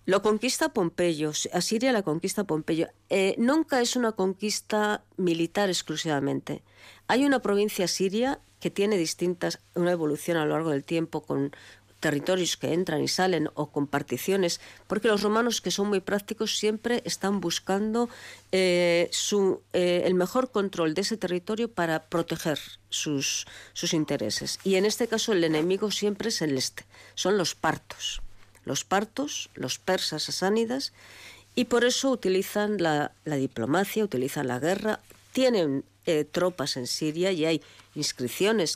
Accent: Spanish